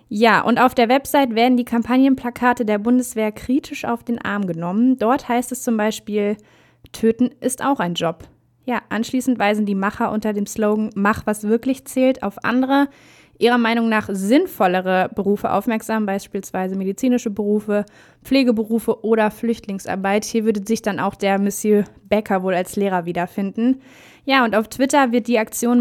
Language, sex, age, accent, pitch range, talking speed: German, female, 20-39, German, 205-245 Hz, 165 wpm